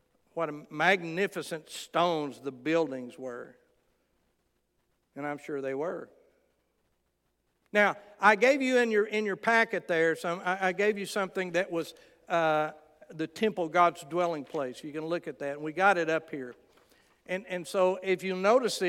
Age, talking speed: 60-79, 160 wpm